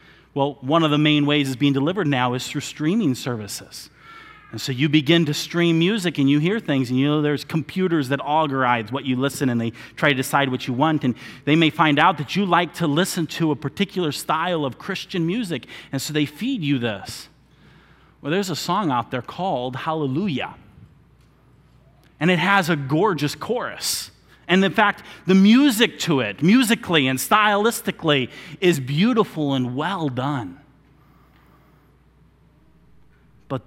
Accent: American